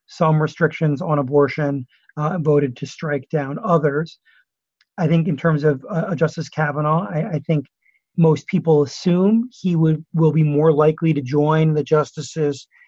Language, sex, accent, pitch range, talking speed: English, male, American, 145-165 Hz, 160 wpm